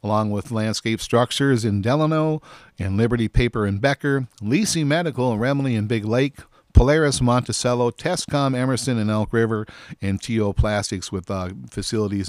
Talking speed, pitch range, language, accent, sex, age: 150 wpm, 105-140 Hz, English, American, male, 50-69